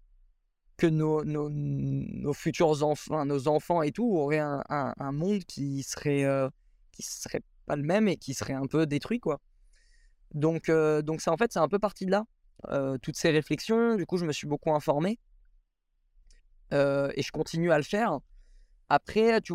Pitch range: 145-195 Hz